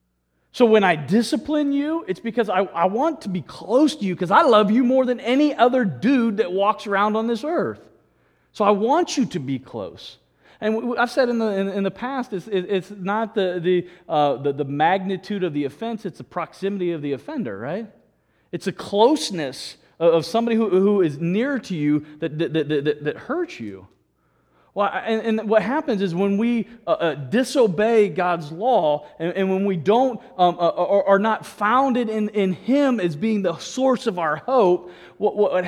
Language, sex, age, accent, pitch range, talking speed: English, male, 40-59, American, 170-230 Hz, 205 wpm